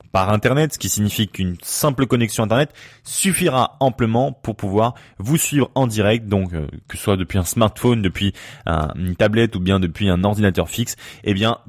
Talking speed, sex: 185 wpm, male